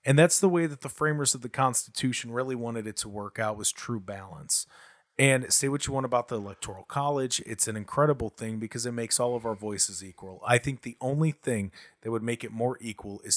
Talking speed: 235 wpm